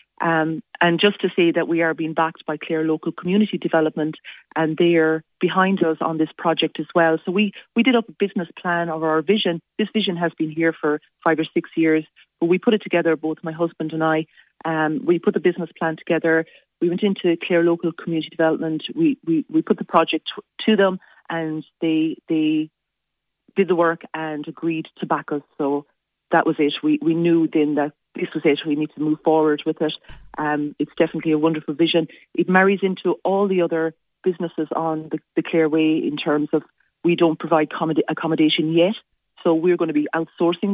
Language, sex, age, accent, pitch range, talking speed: English, female, 30-49, Irish, 160-175 Hz, 205 wpm